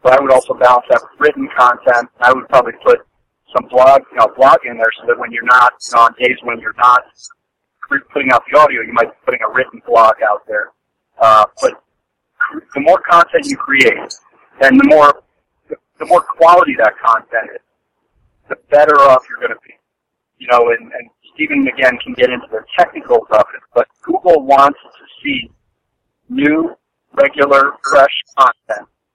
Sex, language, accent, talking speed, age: male, English, American, 180 wpm, 50-69